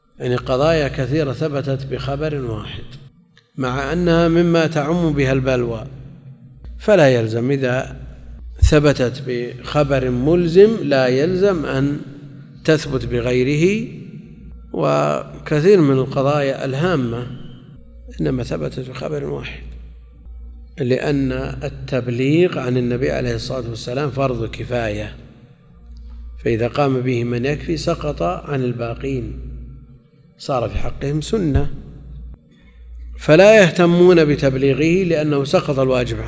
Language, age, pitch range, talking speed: Arabic, 50-69, 115-145 Hz, 95 wpm